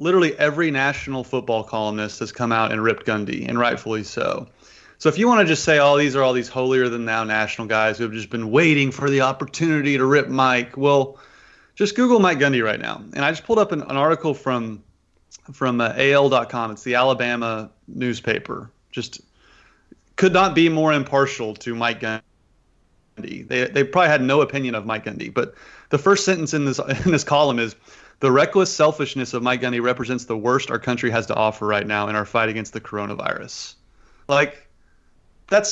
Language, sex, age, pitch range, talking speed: English, male, 30-49, 115-155 Hz, 195 wpm